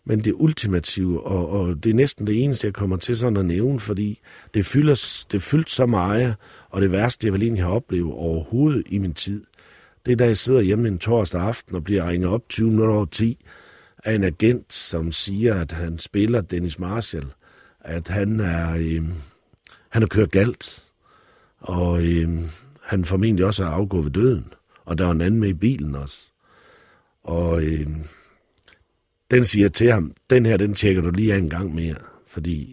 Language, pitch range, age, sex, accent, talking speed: Danish, 85-110 Hz, 60-79, male, native, 185 wpm